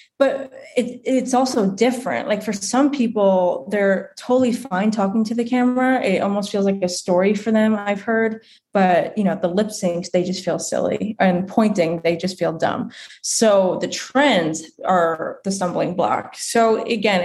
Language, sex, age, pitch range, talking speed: English, female, 20-39, 180-220 Hz, 175 wpm